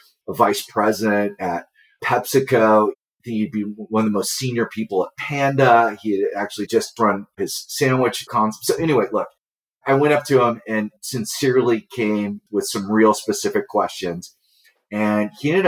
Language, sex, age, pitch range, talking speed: English, male, 30-49, 100-125 Hz, 155 wpm